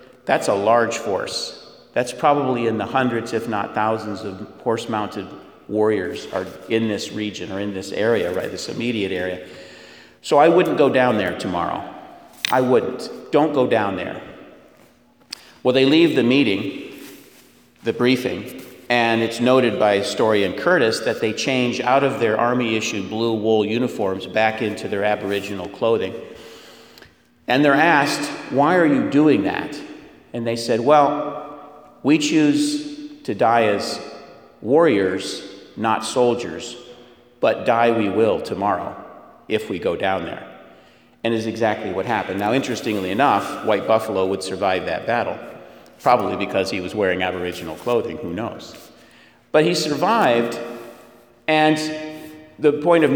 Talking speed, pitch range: 145 wpm, 105-140 Hz